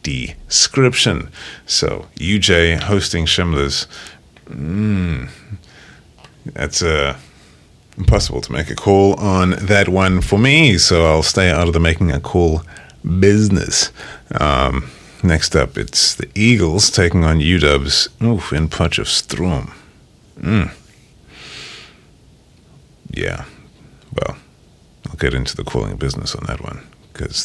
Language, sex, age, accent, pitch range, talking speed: English, male, 30-49, American, 70-95 Hz, 120 wpm